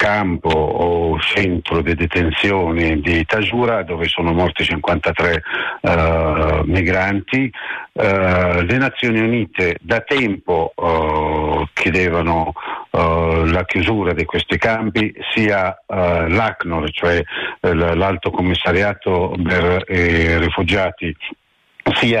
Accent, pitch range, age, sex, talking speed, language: native, 85-110 Hz, 50-69, male, 105 wpm, Italian